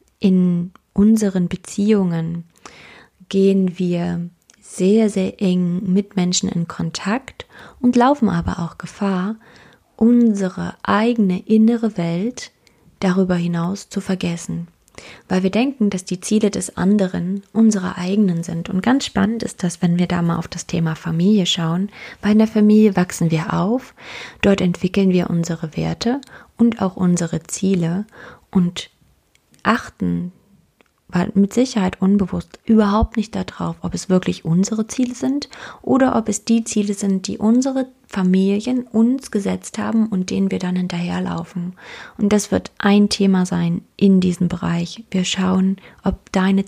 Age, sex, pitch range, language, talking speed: 20-39, female, 175-210 Hz, German, 145 wpm